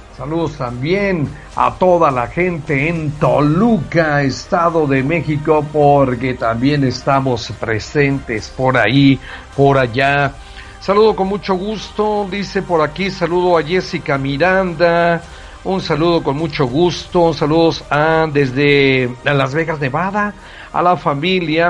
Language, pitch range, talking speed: English, 135-175 Hz, 120 wpm